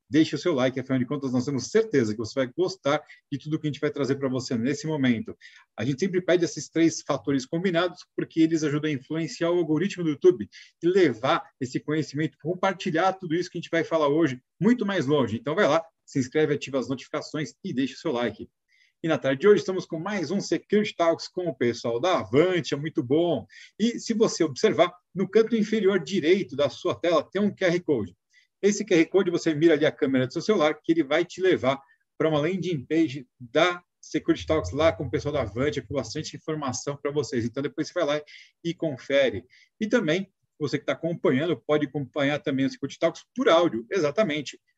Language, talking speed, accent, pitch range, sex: Portuguese, 215 wpm, Brazilian, 145-185 Hz, male